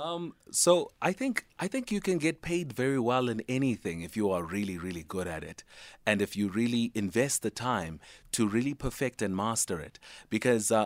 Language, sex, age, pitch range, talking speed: English, male, 30-49, 110-160 Hz, 195 wpm